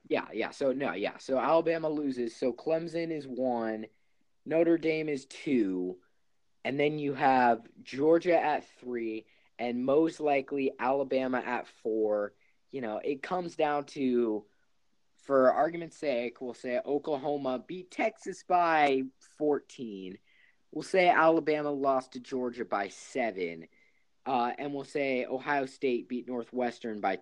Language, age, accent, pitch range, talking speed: English, 20-39, American, 125-160 Hz, 135 wpm